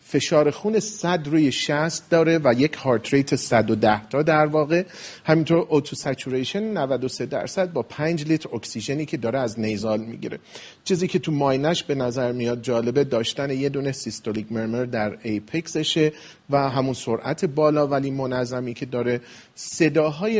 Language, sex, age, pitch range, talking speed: Persian, male, 40-59, 120-160 Hz, 145 wpm